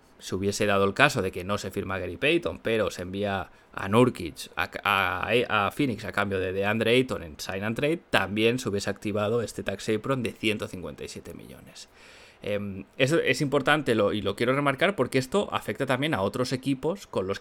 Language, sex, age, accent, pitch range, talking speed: Spanish, male, 20-39, Spanish, 100-135 Hz, 200 wpm